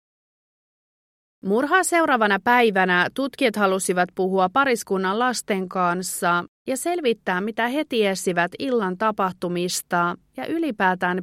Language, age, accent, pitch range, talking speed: Finnish, 30-49, native, 180-240 Hz, 95 wpm